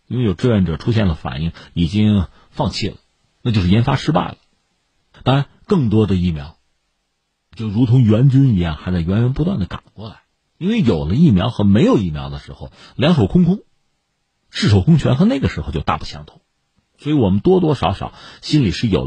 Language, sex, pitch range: Chinese, male, 85-135 Hz